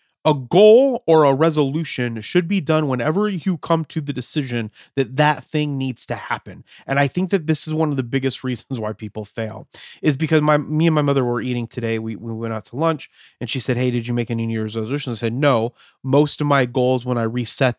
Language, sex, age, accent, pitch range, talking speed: English, male, 30-49, American, 115-150 Hz, 235 wpm